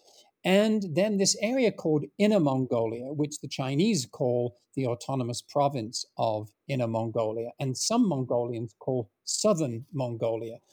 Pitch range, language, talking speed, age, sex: 130-165 Hz, English, 130 wpm, 50-69, male